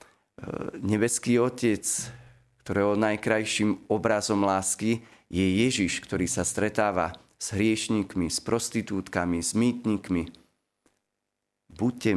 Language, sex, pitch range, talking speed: Slovak, male, 90-110 Hz, 90 wpm